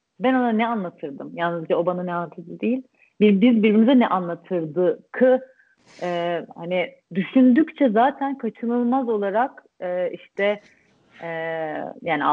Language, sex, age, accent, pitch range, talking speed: Turkish, female, 40-59, native, 165-215 Hz, 115 wpm